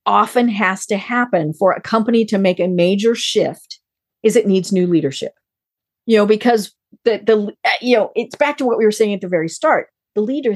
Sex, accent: female, American